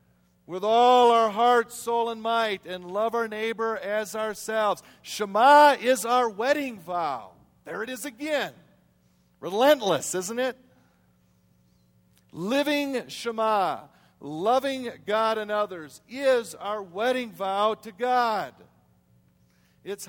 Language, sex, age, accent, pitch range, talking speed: English, male, 50-69, American, 160-225 Hz, 115 wpm